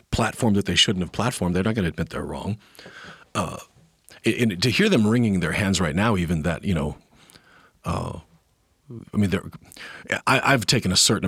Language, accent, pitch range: English, American, 85-110 Hz